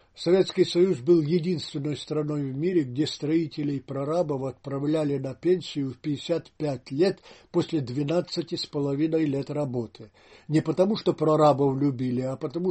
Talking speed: 125 wpm